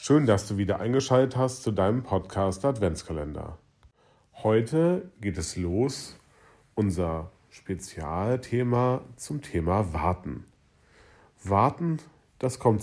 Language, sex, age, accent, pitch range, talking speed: German, male, 40-59, German, 85-110 Hz, 105 wpm